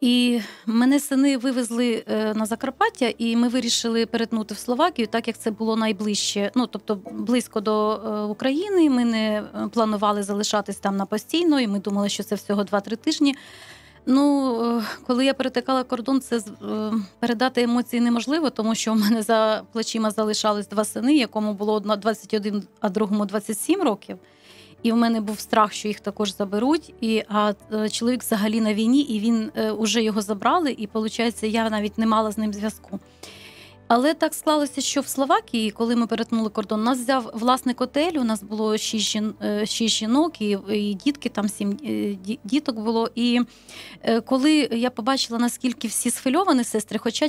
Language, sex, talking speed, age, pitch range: Ukrainian, female, 165 wpm, 30-49, 215-250 Hz